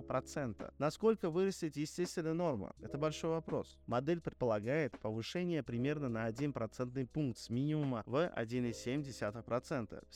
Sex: male